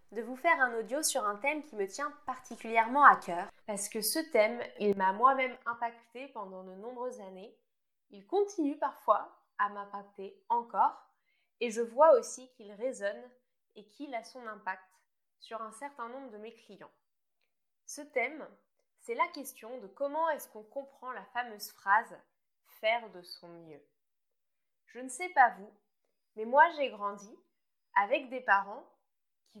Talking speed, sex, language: 165 wpm, female, French